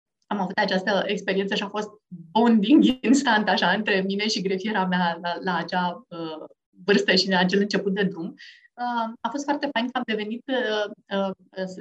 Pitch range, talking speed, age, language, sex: 190-245 Hz, 185 wpm, 30-49, Romanian, female